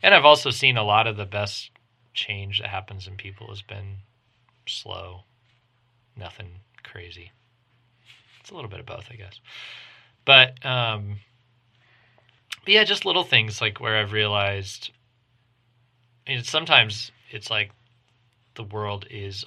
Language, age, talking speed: English, 20-39, 140 wpm